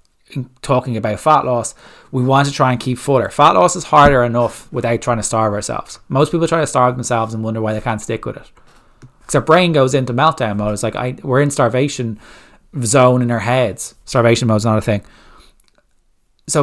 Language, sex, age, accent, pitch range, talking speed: English, male, 20-39, Irish, 115-140 Hz, 215 wpm